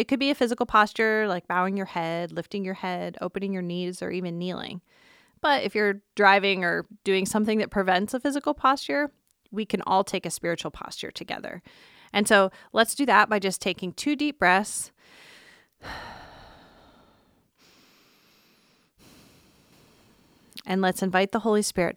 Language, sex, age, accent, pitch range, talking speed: English, female, 30-49, American, 170-205 Hz, 155 wpm